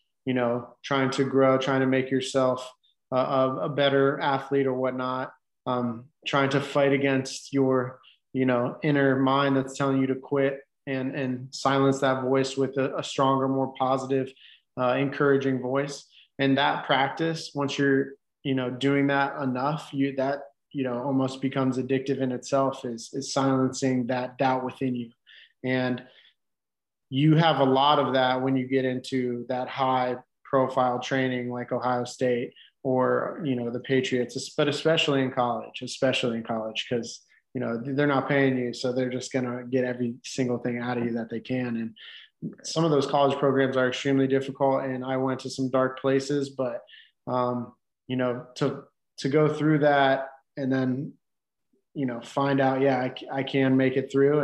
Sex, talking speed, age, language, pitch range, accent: male, 175 wpm, 30-49, English, 125-140 Hz, American